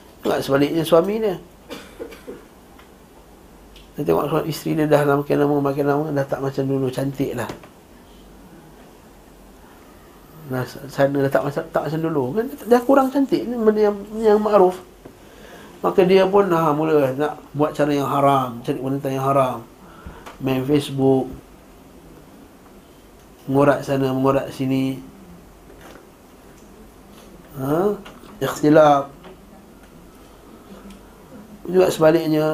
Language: Malay